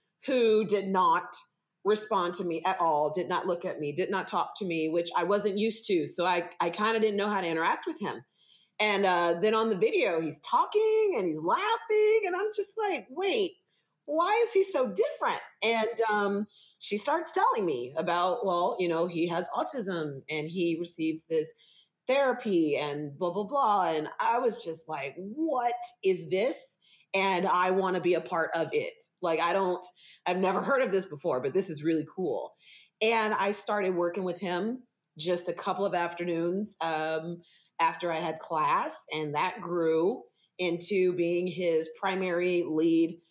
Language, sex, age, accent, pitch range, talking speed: English, female, 40-59, American, 165-215 Hz, 185 wpm